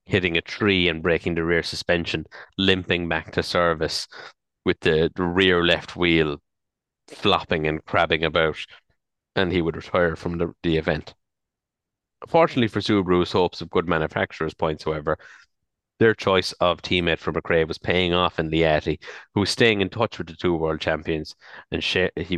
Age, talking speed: 30-49, 165 wpm